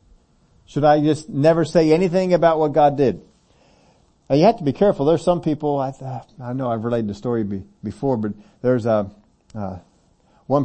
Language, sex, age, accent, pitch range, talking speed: English, male, 50-69, American, 115-150 Hz, 185 wpm